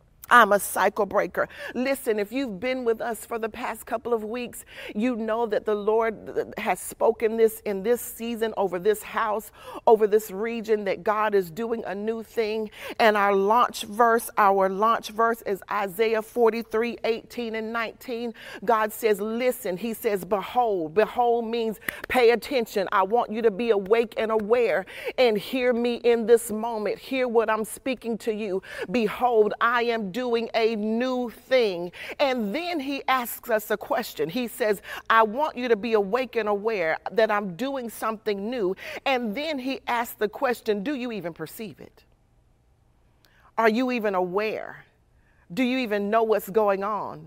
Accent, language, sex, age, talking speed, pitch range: American, English, female, 40-59, 170 wpm, 215-240 Hz